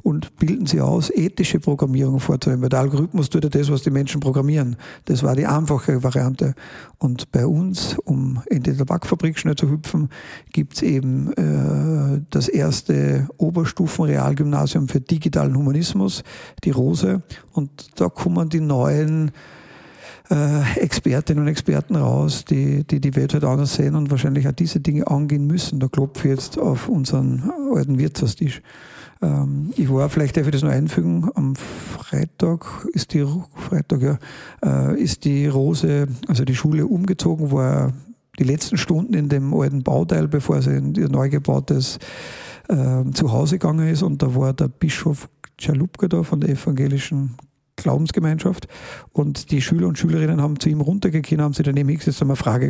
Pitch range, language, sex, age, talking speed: 135-160 Hz, German, male, 50-69, 155 wpm